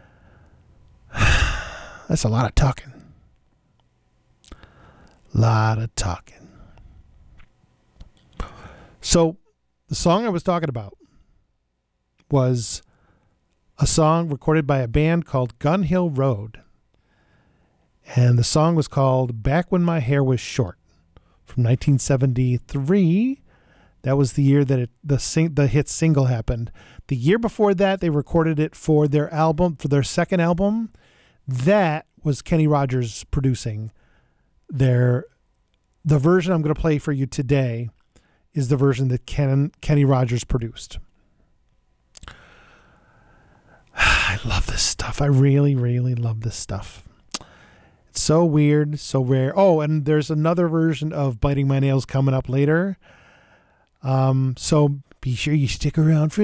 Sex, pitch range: male, 115-155 Hz